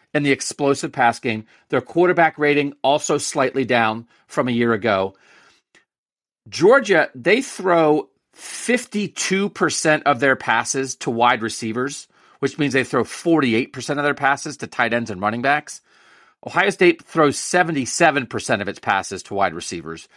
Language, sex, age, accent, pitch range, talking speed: English, male, 40-59, American, 120-155 Hz, 145 wpm